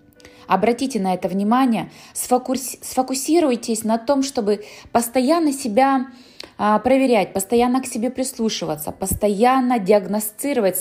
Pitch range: 190-240 Hz